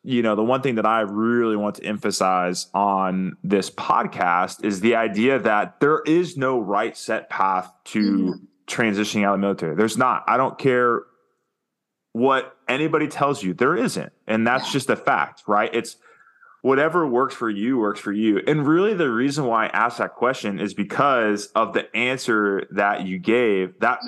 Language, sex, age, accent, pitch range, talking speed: English, male, 20-39, American, 100-125 Hz, 180 wpm